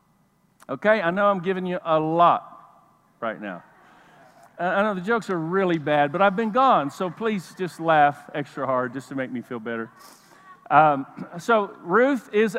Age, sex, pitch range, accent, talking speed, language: 50-69, male, 190-250 Hz, American, 175 wpm, English